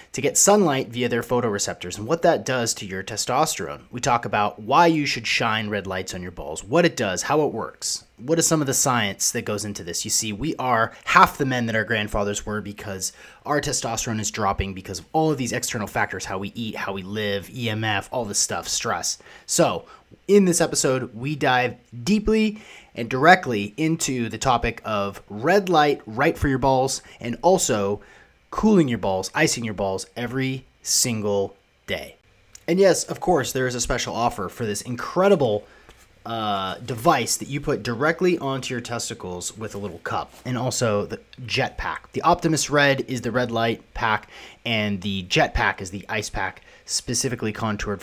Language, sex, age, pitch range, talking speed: English, male, 30-49, 100-135 Hz, 190 wpm